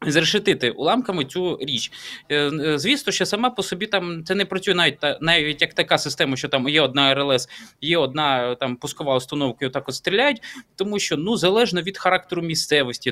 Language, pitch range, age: Ukrainian, 140-185 Hz, 20-39